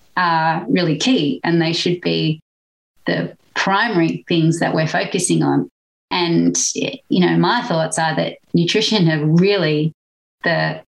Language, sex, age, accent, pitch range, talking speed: English, female, 30-49, Australian, 155-190 Hz, 140 wpm